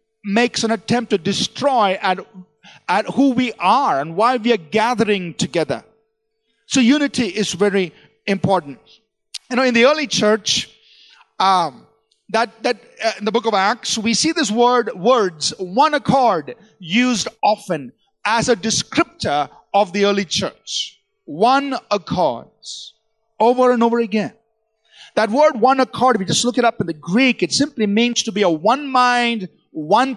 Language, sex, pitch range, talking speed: English, male, 195-245 Hz, 160 wpm